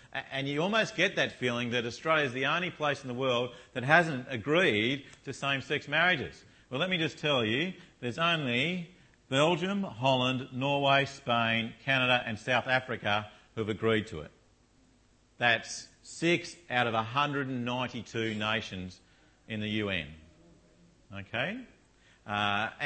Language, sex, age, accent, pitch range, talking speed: English, male, 50-69, Australian, 110-145 Hz, 140 wpm